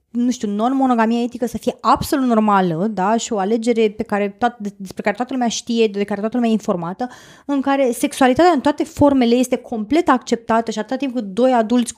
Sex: female